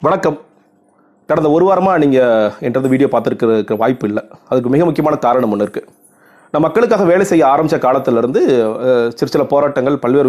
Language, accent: Tamil, native